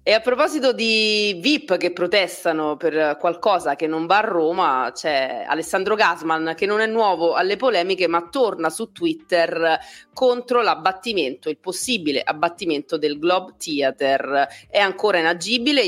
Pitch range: 155-205 Hz